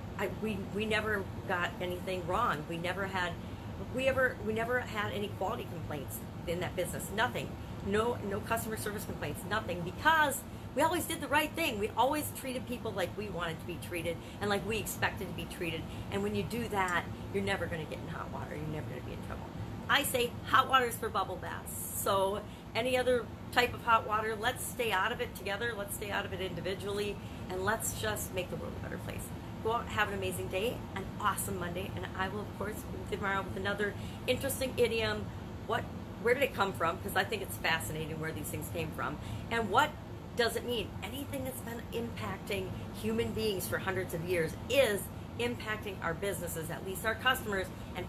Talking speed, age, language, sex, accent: 205 wpm, 40-59, English, female, American